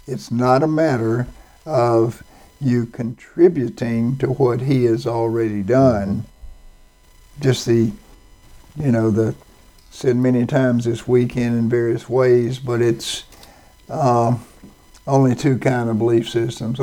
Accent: American